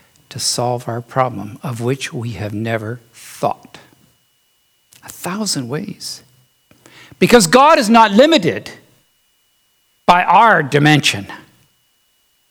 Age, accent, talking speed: 60-79, American, 100 wpm